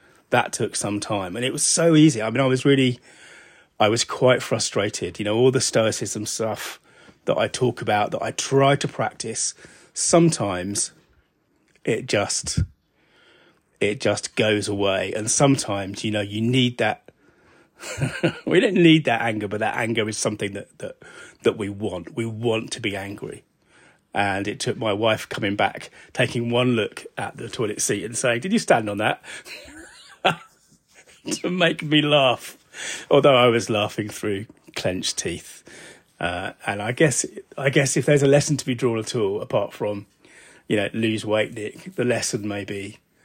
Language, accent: English, British